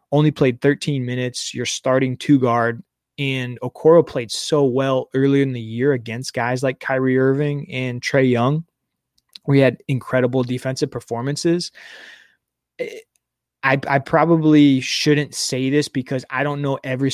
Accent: American